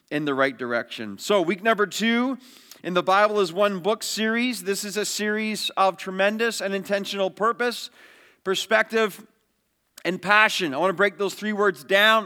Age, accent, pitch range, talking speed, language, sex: 40-59, American, 195-225 Hz, 170 wpm, English, male